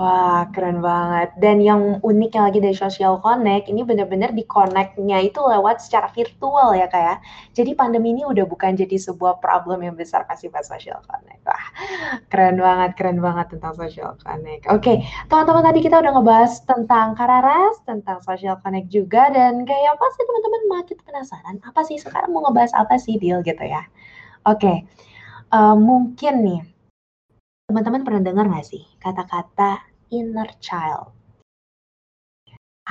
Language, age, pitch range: Indonesian, 20-39, 185-245 Hz